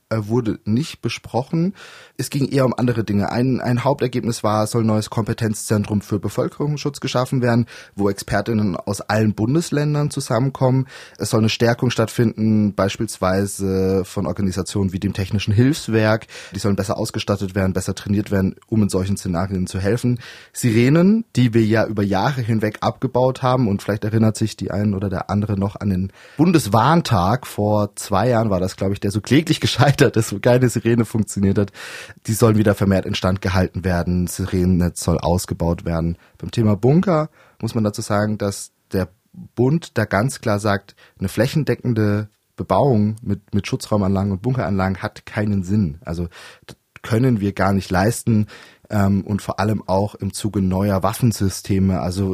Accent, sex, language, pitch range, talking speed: German, male, German, 100-120 Hz, 165 wpm